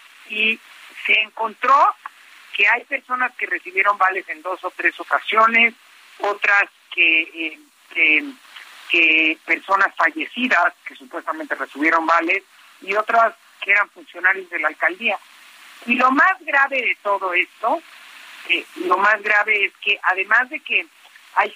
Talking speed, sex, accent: 135 wpm, male, Mexican